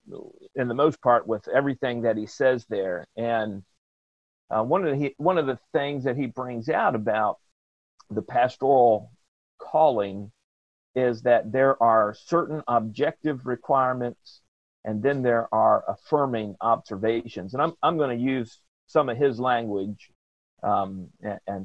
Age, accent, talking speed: 40-59, American, 145 wpm